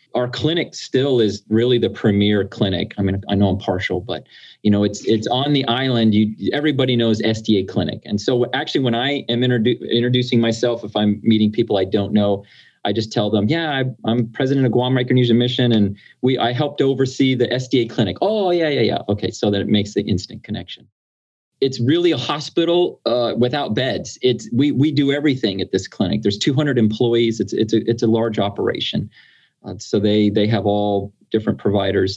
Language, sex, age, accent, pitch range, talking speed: English, male, 30-49, American, 105-125 Hz, 200 wpm